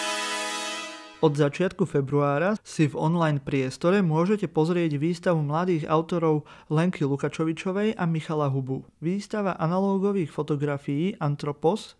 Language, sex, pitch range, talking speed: Slovak, male, 150-190 Hz, 105 wpm